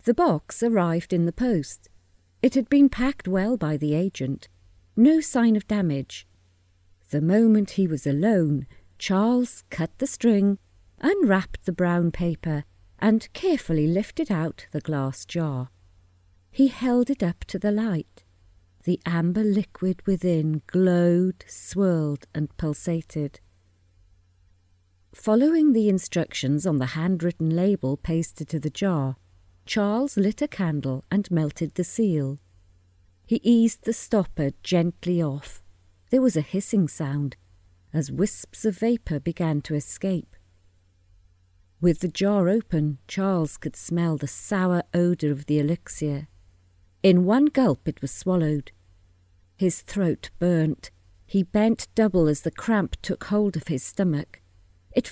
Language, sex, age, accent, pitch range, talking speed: English, female, 40-59, British, 125-200 Hz, 135 wpm